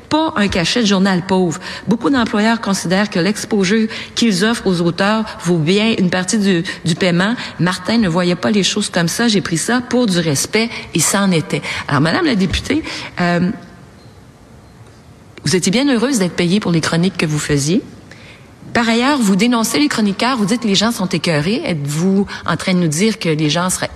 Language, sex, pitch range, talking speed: French, female, 170-225 Hz, 200 wpm